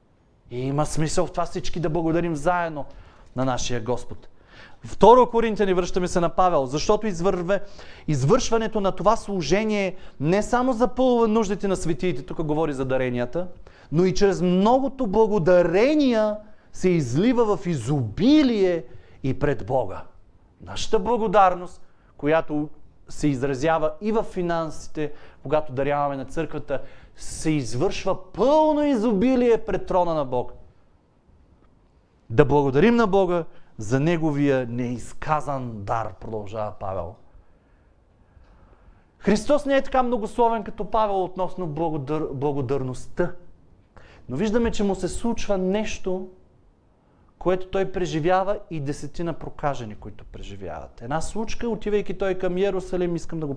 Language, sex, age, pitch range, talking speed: Bulgarian, male, 30-49, 130-195 Hz, 120 wpm